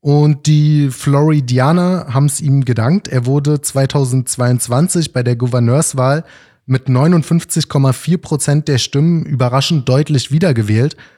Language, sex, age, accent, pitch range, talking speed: German, male, 20-39, German, 125-150 Hz, 115 wpm